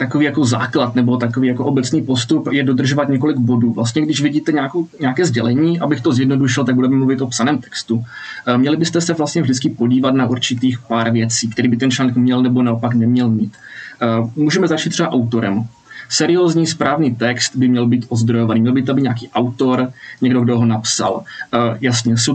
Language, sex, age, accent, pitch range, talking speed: Czech, male, 20-39, native, 120-135 Hz, 180 wpm